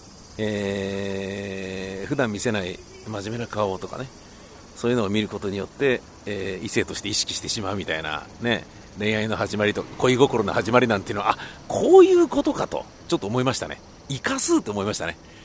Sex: male